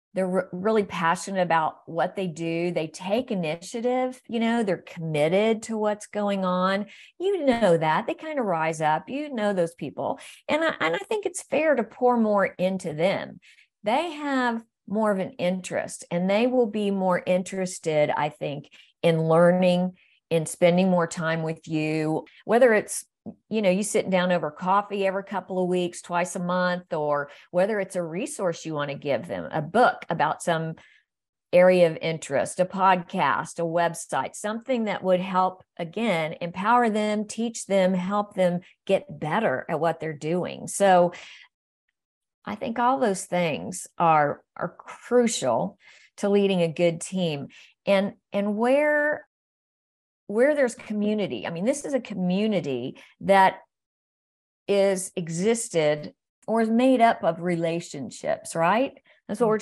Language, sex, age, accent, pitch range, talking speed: English, female, 50-69, American, 170-220 Hz, 155 wpm